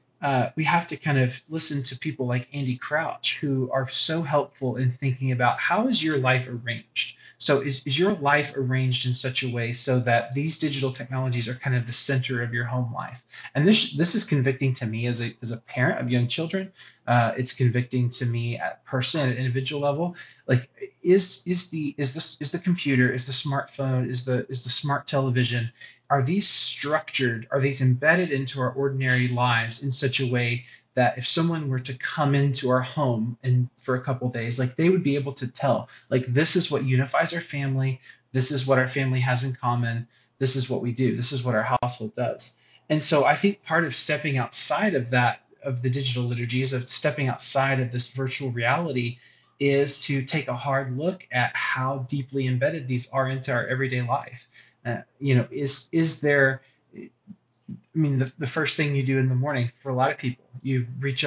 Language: English